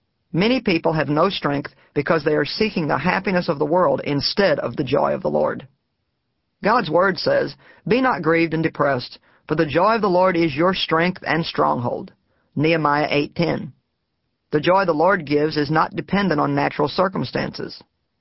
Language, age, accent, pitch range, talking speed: English, 50-69, American, 145-185 Hz, 175 wpm